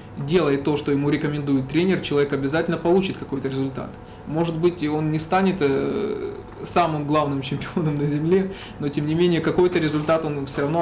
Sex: male